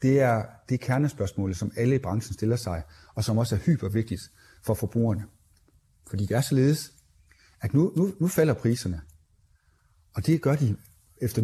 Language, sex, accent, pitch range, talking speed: Danish, male, native, 100-135 Hz, 170 wpm